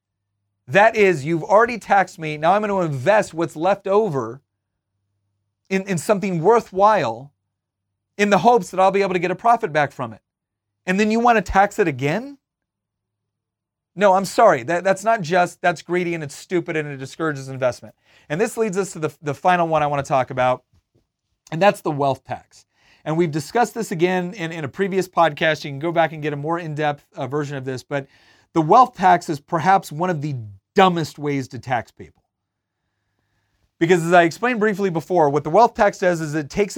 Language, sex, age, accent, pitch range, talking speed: English, male, 30-49, American, 140-195 Hz, 200 wpm